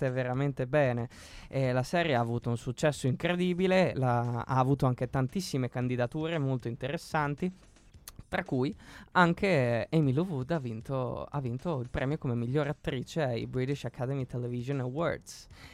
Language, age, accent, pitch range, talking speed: Italian, 20-39, native, 125-165 Hz, 150 wpm